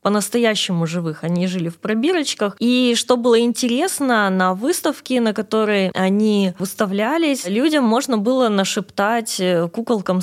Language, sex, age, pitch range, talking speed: Russian, female, 20-39, 185-230 Hz, 125 wpm